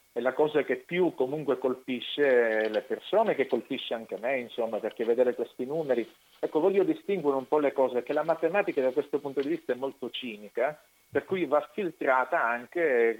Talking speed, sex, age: 185 wpm, male, 50-69